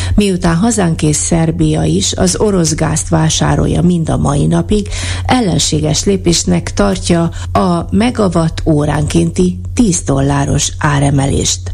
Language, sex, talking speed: Hungarian, female, 105 wpm